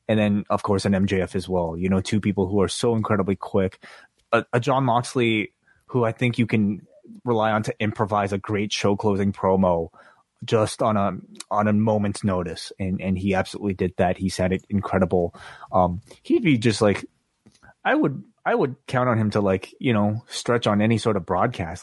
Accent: American